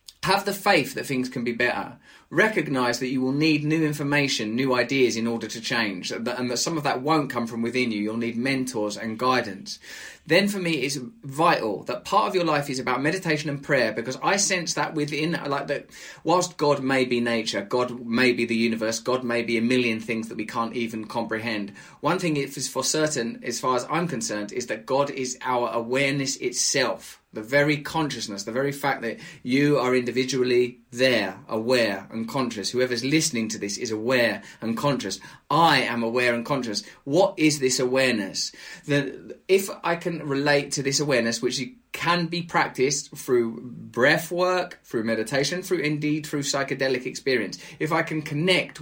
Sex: male